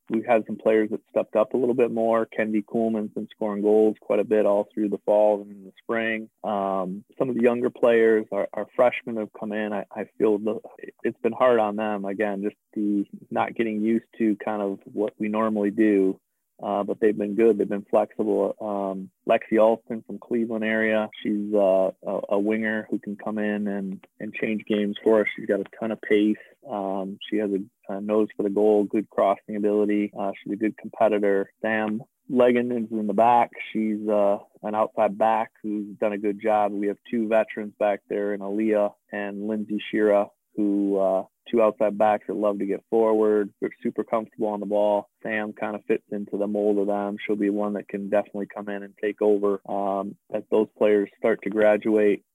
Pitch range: 100-110 Hz